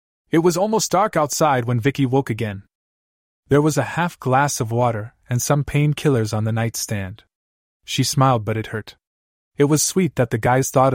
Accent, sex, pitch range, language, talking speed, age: American, male, 110-135 Hz, English, 185 wpm, 20-39